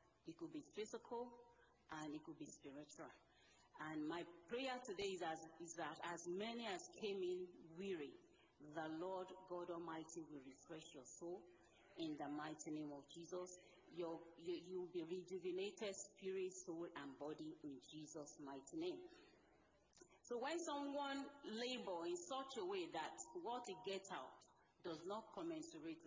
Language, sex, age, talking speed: English, female, 40-59, 145 wpm